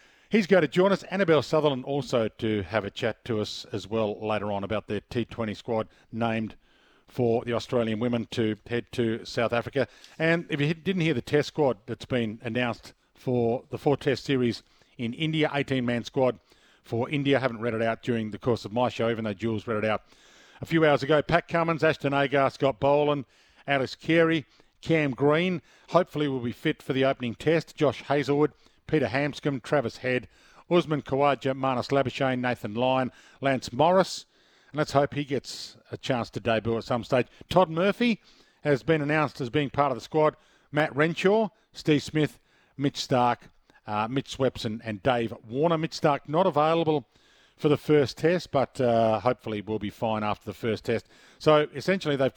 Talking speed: 185 wpm